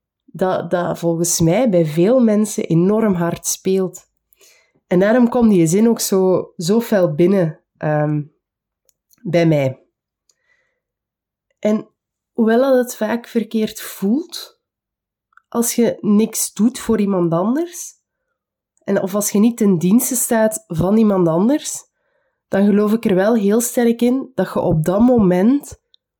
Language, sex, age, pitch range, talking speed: Dutch, female, 20-39, 175-230 Hz, 135 wpm